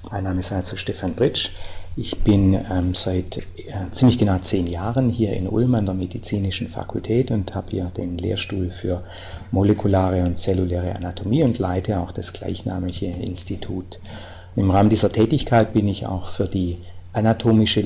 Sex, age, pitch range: male, 40-59, 90-105 Hz